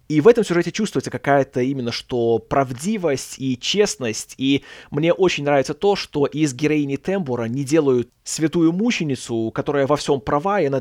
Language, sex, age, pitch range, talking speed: Russian, male, 20-39, 130-195 Hz, 165 wpm